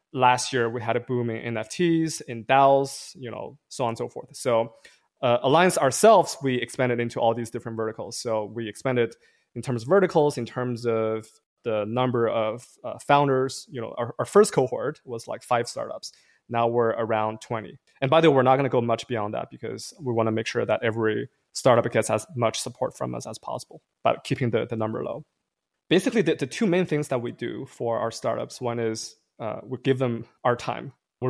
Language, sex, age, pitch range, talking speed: English, male, 20-39, 115-135 Hz, 215 wpm